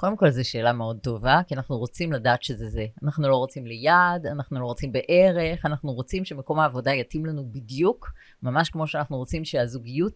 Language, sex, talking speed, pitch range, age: Hebrew, female, 190 wpm, 135-185 Hz, 30-49